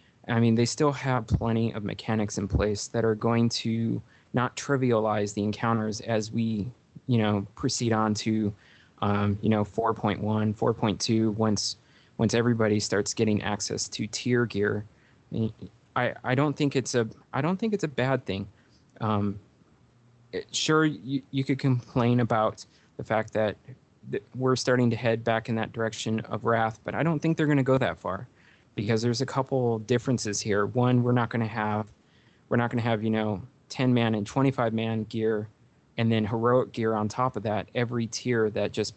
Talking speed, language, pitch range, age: 180 wpm, English, 110-125 Hz, 20-39